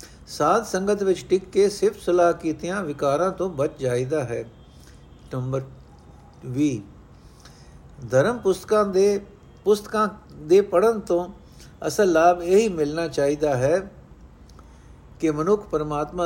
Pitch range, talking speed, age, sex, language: 125-180 Hz, 115 wpm, 60-79, male, Punjabi